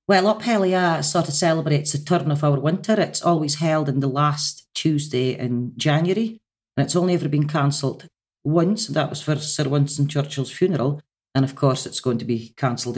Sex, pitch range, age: female, 125-150 Hz, 40-59